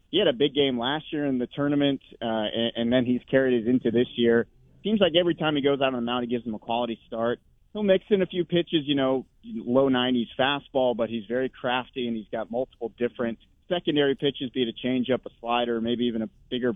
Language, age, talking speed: English, 30-49, 245 wpm